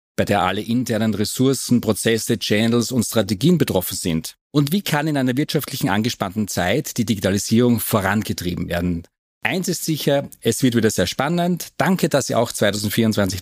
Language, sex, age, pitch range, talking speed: German, male, 40-59, 105-135 Hz, 160 wpm